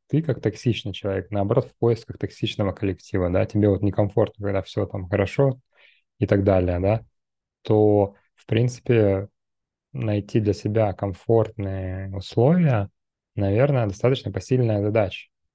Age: 20-39